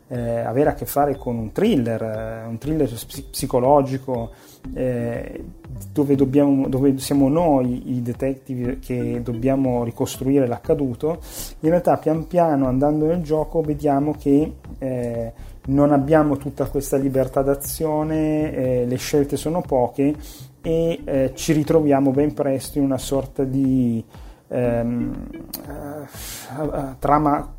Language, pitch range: Italian, 125-145 Hz